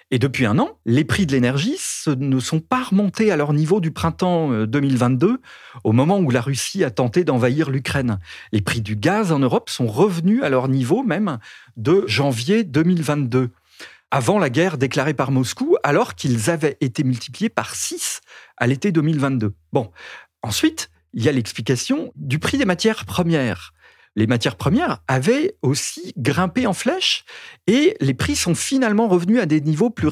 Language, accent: French, French